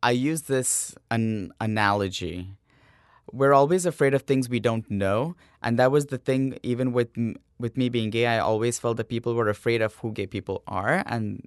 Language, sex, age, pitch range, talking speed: English, male, 20-39, 110-135 Hz, 195 wpm